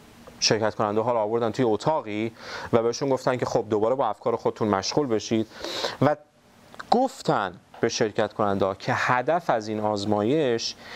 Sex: male